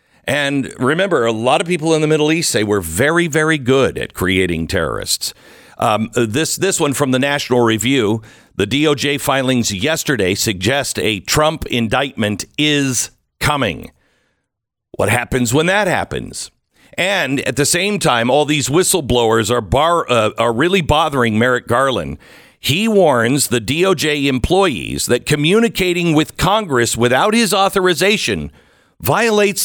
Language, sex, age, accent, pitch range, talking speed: English, male, 50-69, American, 115-170 Hz, 140 wpm